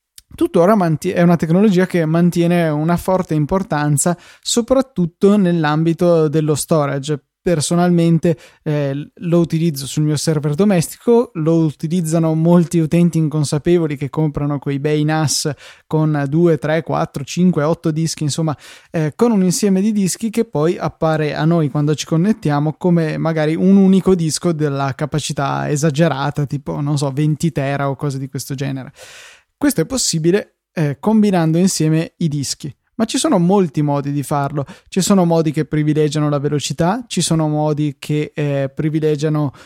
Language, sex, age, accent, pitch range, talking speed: Italian, male, 20-39, native, 150-175 Hz, 150 wpm